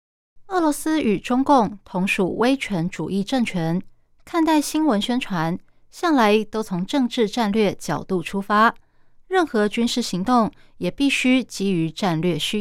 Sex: female